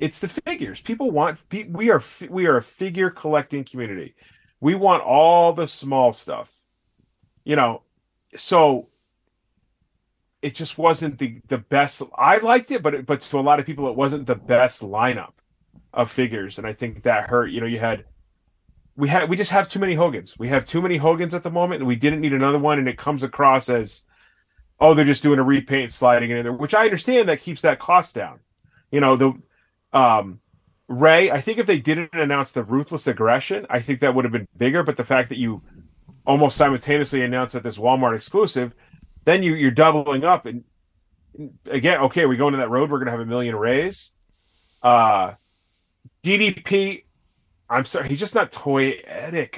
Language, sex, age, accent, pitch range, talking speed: English, male, 30-49, American, 120-155 Hz, 195 wpm